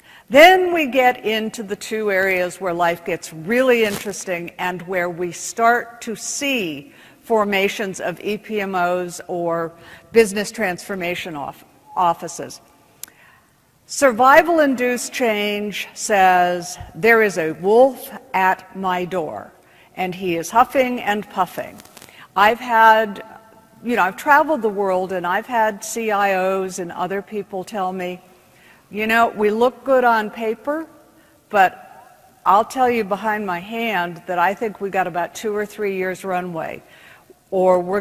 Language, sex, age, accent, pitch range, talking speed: English, female, 60-79, American, 175-225 Hz, 135 wpm